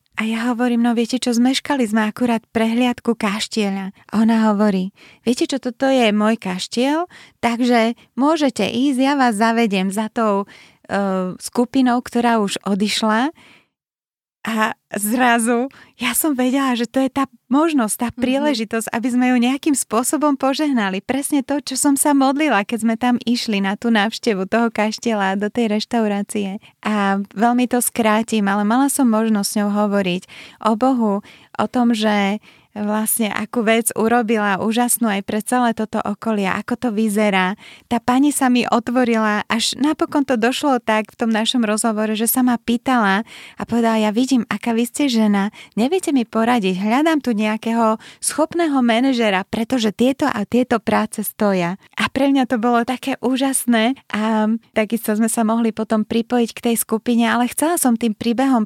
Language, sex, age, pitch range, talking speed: Slovak, female, 20-39, 215-250 Hz, 165 wpm